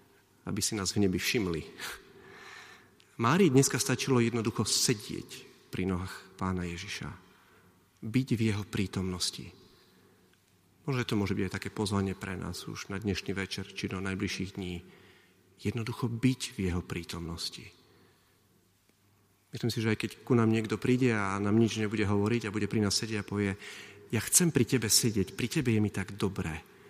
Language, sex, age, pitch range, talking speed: Slovak, male, 40-59, 95-120 Hz, 160 wpm